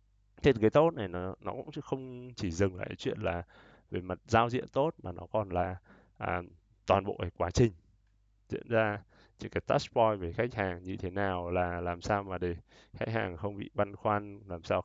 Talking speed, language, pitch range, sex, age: 220 wpm, Vietnamese, 95-110 Hz, male, 20-39